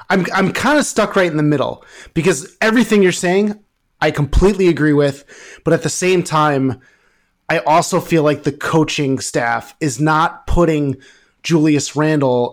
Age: 30-49